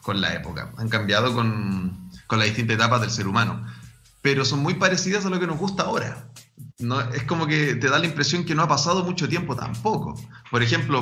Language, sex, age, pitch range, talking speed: Spanish, male, 30-49, 120-160 Hz, 220 wpm